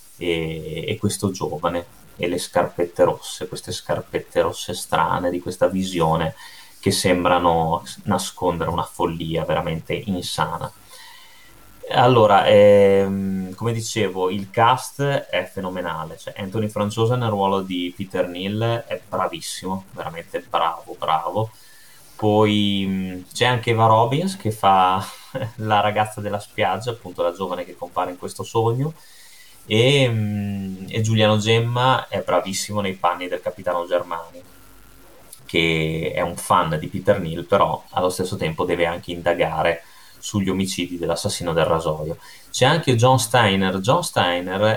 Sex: male